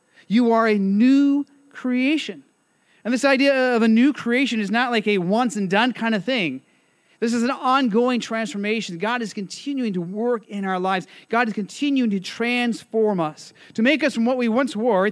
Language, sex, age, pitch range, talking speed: English, male, 30-49, 170-225 Hz, 200 wpm